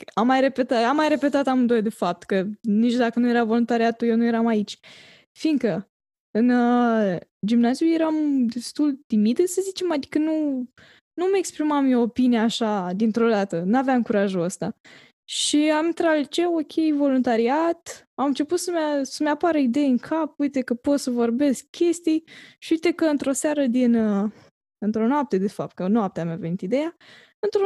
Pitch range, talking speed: 220-290 Hz, 170 wpm